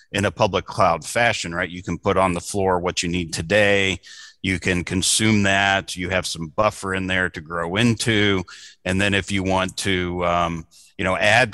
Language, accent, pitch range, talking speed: English, American, 85-100 Hz, 205 wpm